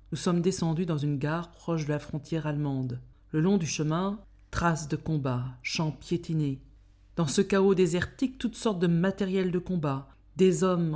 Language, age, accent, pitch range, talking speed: French, 50-69, French, 145-180 Hz, 175 wpm